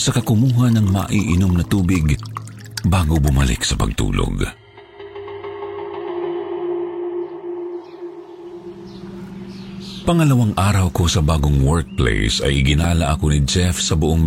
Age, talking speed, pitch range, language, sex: 50-69, 95 wpm, 80-135 Hz, Filipino, male